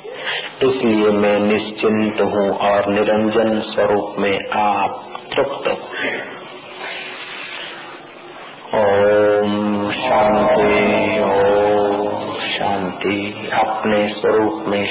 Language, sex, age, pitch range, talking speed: Hindi, male, 40-59, 100-110 Hz, 70 wpm